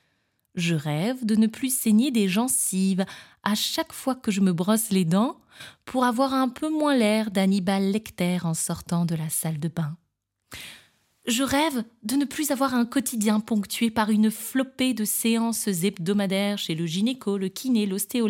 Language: French